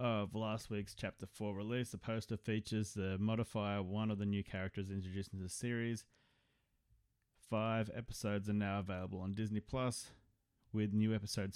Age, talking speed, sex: 30-49, 160 wpm, male